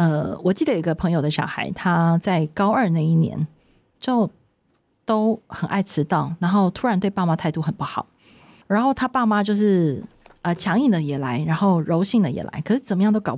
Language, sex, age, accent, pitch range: Chinese, female, 30-49, native, 160-205 Hz